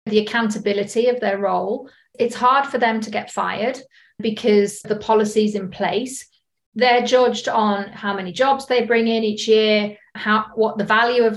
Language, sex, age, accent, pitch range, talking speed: English, female, 40-59, British, 205-235 Hz, 175 wpm